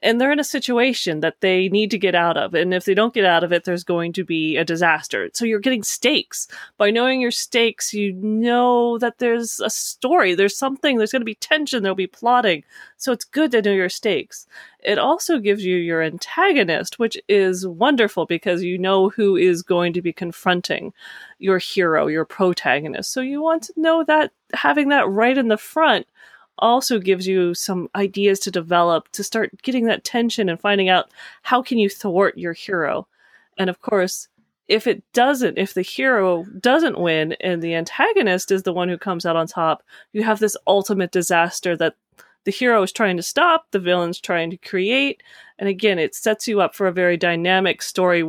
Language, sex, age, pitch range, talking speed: English, female, 30-49, 180-240 Hz, 200 wpm